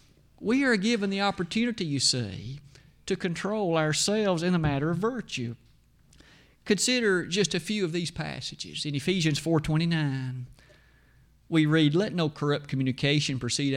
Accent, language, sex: American, English, male